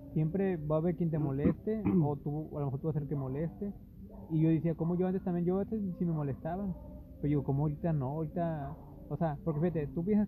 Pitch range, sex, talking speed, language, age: 140-170 Hz, male, 250 wpm, Spanish, 20-39